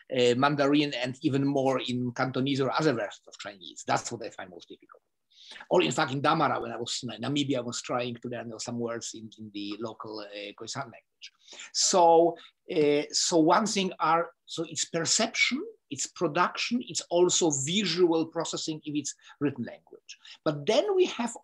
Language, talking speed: English, 180 wpm